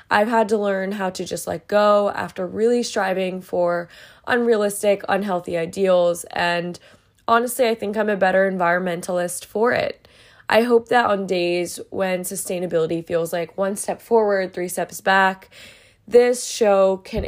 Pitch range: 180-220 Hz